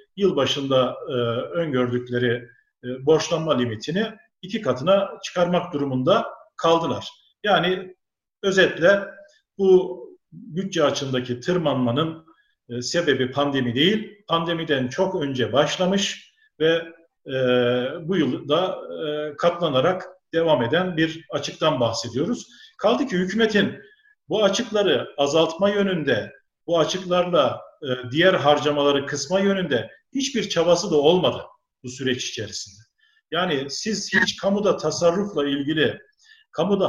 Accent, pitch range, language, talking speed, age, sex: native, 140-195 Hz, Turkish, 100 wpm, 50-69, male